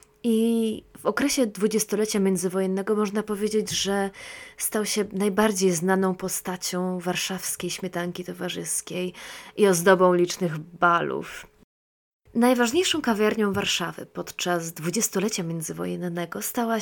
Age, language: 20-39, Polish